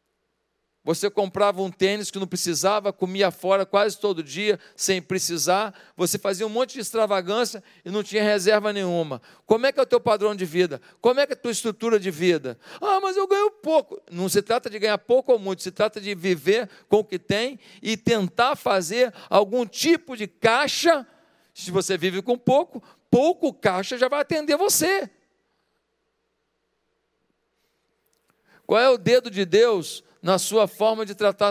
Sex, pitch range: male, 195-265 Hz